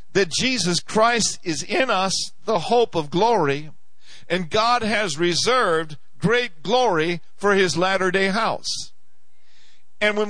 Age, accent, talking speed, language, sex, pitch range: 50-69, American, 130 wpm, English, male, 180-235 Hz